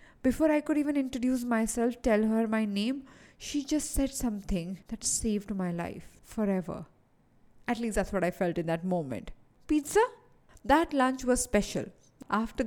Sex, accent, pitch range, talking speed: female, Indian, 195-265 Hz, 160 wpm